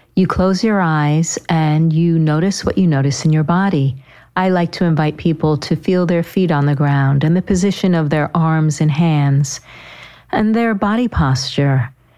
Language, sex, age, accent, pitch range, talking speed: English, female, 50-69, American, 145-185 Hz, 180 wpm